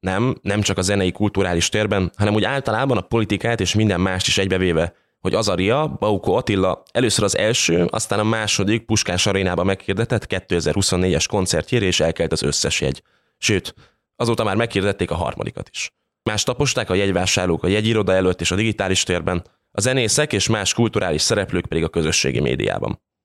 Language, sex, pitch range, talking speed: Hungarian, male, 90-110 Hz, 165 wpm